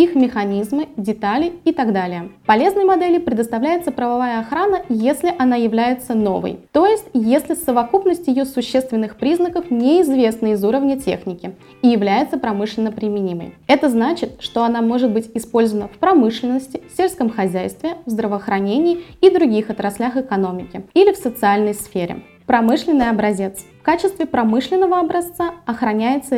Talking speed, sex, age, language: 130 wpm, female, 20-39, Russian